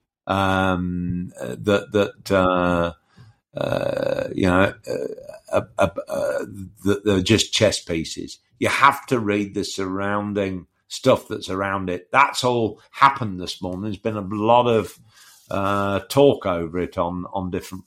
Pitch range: 100-125 Hz